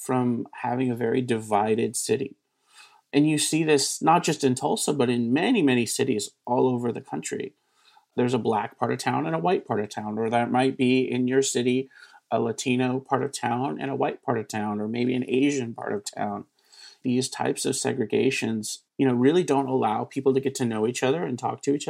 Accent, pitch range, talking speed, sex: American, 125-155 Hz, 220 wpm, male